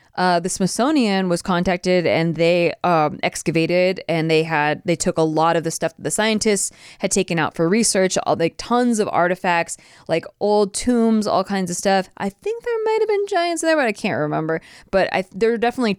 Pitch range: 155-190 Hz